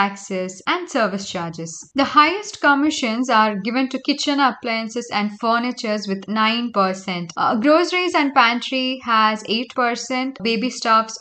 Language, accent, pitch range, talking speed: English, Indian, 205-260 Hz, 130 wpm